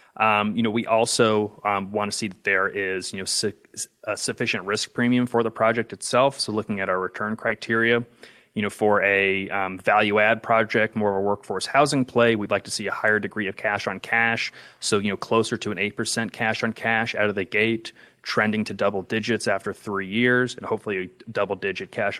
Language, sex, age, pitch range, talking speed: English, male, 30-49, 100-115 Hz, 215 wpm